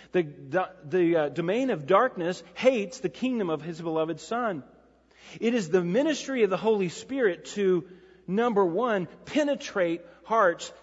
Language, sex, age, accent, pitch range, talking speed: English, male, 40-59, American, 155-225 Hz, 145 wpm